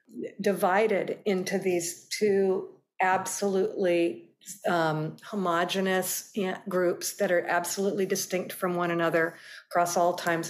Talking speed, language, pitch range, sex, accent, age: 105 wpm, English, 175-205 Hz, female, American, 50-69